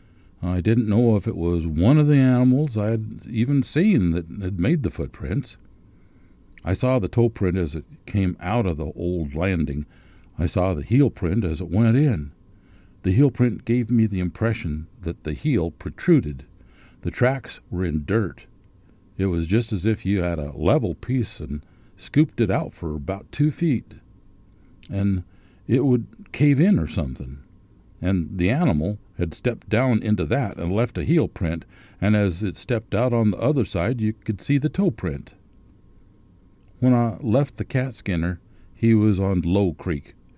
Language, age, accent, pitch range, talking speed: English, 60-79, American, 85-115 Hz, 180 wpm